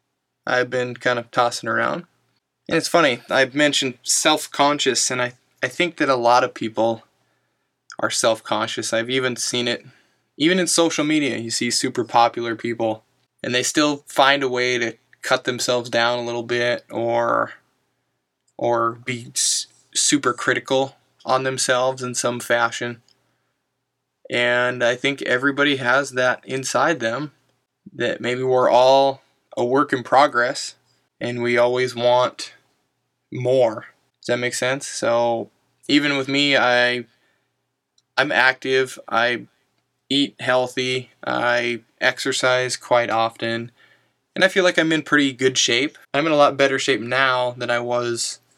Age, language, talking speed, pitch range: 20-39, English, 145 wpm, 120-135 Hz